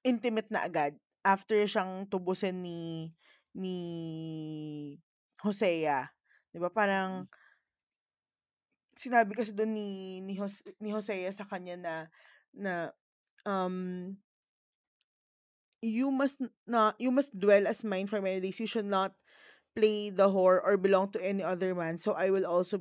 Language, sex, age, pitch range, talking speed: Filipino, female, 20-39, 185-235 Hz, 135 wpm